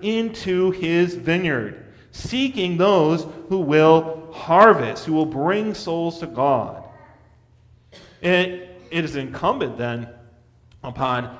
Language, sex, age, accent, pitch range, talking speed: English, male, 40-59, American, 120-185 Hz, 105 wpm